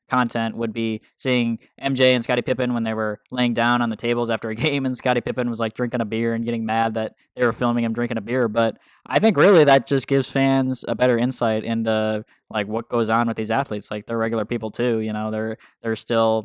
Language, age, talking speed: English, 10-29, 245 wpm